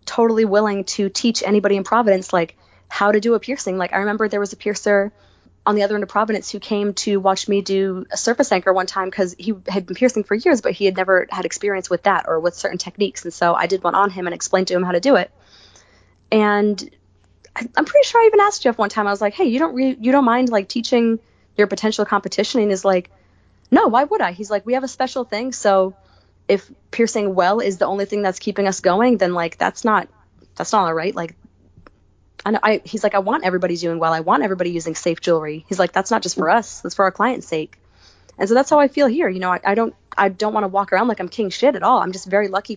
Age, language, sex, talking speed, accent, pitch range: 20-39, English, female, 260 wpm, American, 180-220 Hz